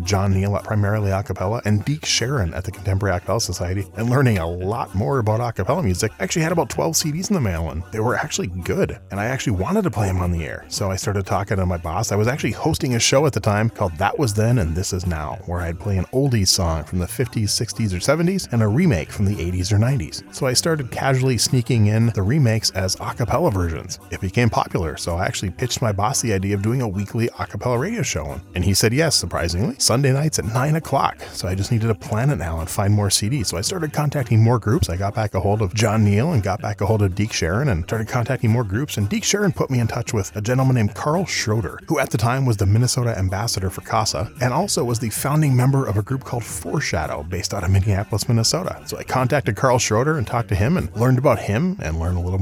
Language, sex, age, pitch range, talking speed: English, male, 30-49, 95-125 Hz, 255 wpm